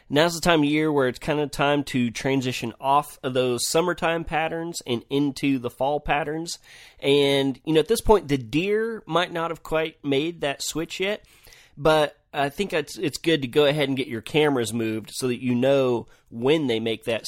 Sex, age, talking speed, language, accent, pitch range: male, 30-49, 210 wpm, English, American, 115-140 Hz